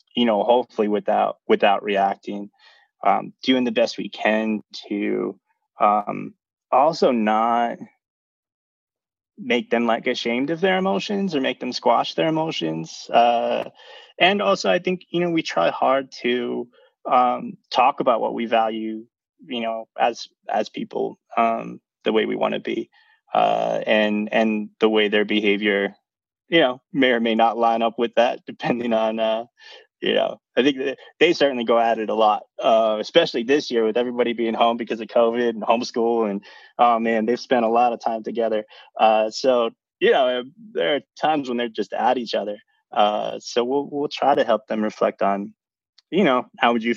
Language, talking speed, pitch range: English, 180 wpm, 110-125 Hz